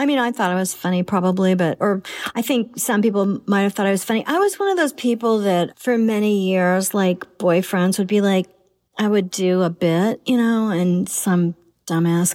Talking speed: 220 wpm